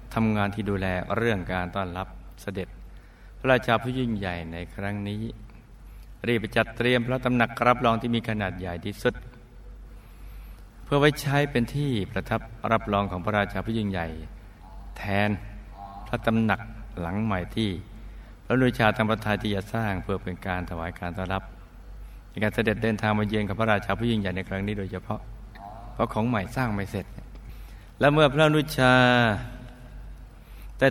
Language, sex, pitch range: Thai, male, 95-115 Hz